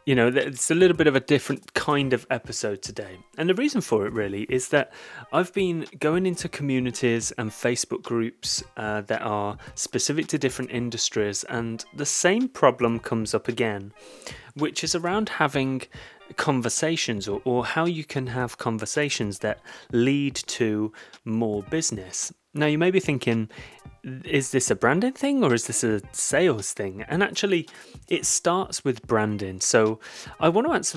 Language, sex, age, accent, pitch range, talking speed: English, male, 30-49, British, 110-145 Hz, 165 wpm